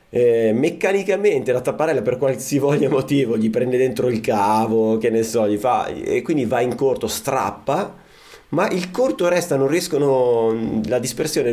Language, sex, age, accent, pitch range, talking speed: Italian, male, 30-49, native, 105-135 Hz, 160 wpm